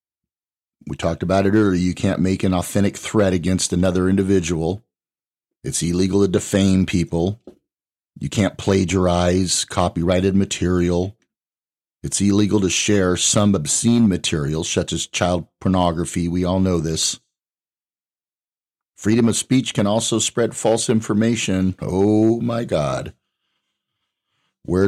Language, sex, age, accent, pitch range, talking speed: English, male, 40-59, American, 85-100 Hz, 125 wpm